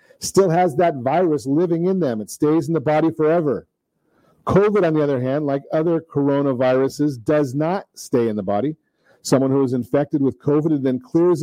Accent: American